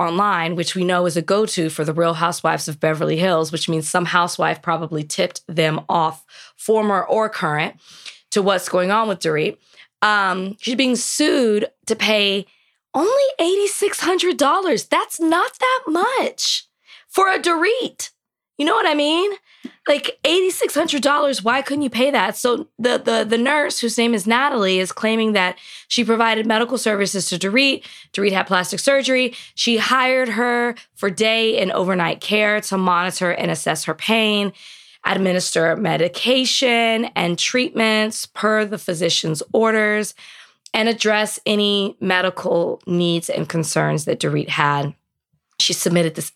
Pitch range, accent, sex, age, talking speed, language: 175-255 Hz, American, female, 20-39, 150 wpm, English